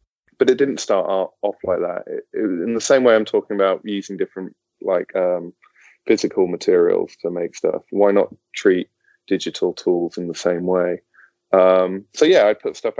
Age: 20-39